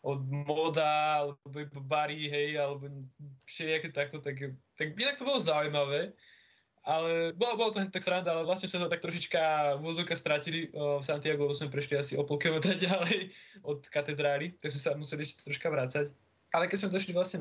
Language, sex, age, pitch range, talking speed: Slovak, male, 20-39, 130-155 Hz, 170 wpm